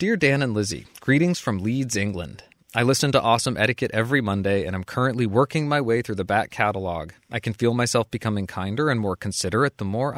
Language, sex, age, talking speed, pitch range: English, male, 30-49, 210 wpm, 95-135 Hz